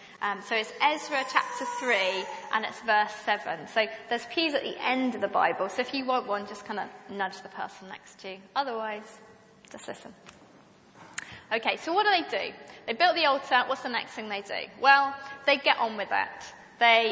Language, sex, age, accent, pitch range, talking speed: English, female, 20-39, British, 210-295 Hz, 205 wpm